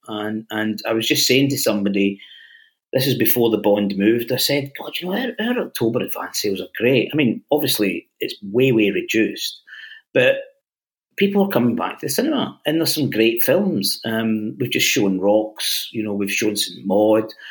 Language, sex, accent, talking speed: English, male, British, 200 wpm